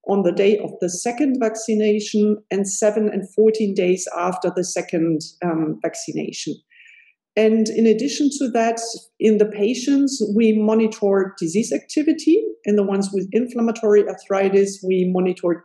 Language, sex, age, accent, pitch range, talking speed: English, female, 50-69, German, 185-230 Hz, 140 wpm